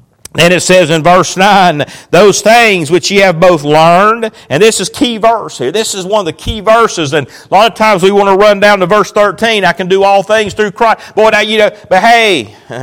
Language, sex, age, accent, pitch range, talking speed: English, male, 40-59, American, 170-225 Hz, 245 wpm